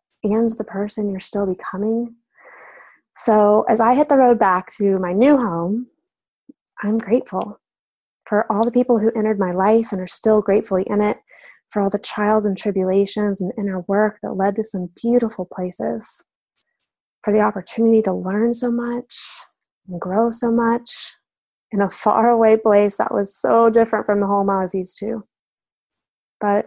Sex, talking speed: female, 170 wpm